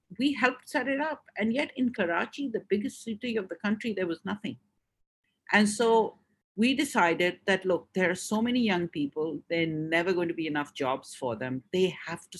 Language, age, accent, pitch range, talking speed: English, 50-69, Indian, 165-215 Hz, 205 wpm